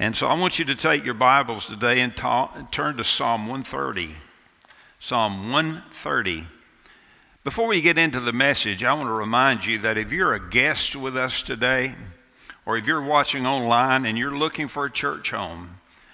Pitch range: 110-140 Hz